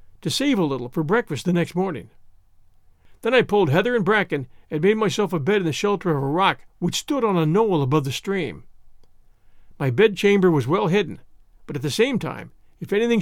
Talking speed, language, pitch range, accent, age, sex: 210 wpm, English, 140-210 Hz, American, 50-69, male